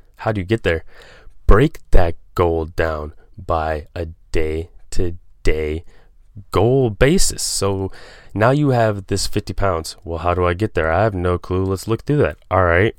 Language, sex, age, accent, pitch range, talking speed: English, male, 20-39, American, 85-105 Hz, 170 wpm